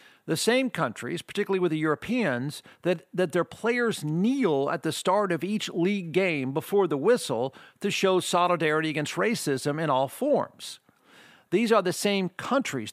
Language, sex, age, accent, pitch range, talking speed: English, male, 50-69, American, 160-205 Hz, 160 wpm